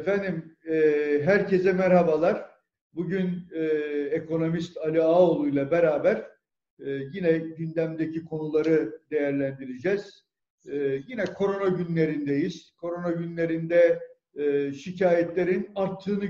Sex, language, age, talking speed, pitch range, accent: male, Turkish, 50-69, 75 wpm, 160-190 Hz, native